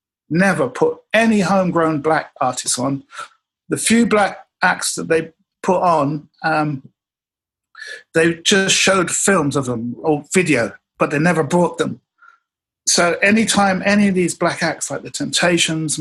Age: 50-69